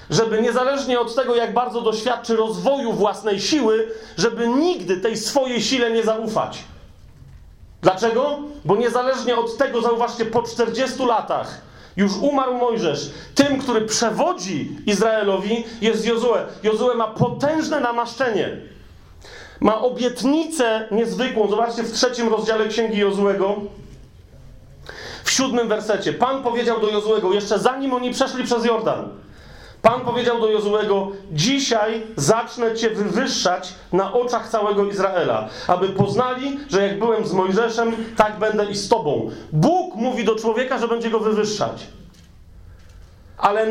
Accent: native